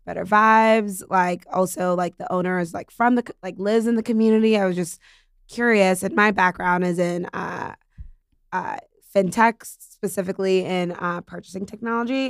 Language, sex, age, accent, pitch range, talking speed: English, female, 20-39, American, 180-200 Hz, 160 wpm